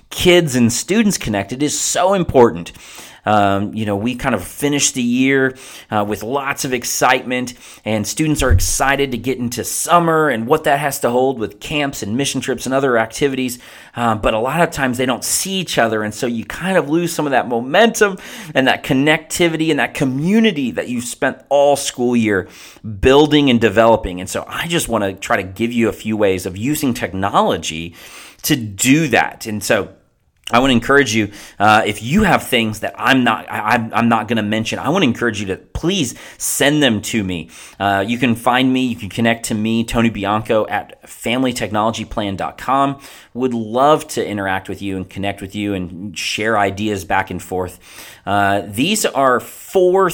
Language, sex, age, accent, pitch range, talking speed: English, male, 30-49, American, 105-140 Hz, 195 wpm